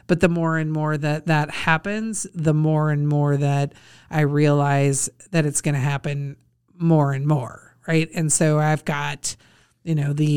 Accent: American